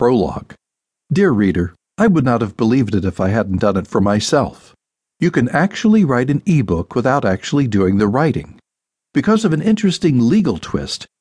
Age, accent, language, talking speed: 60-79, American, English, 175 wpm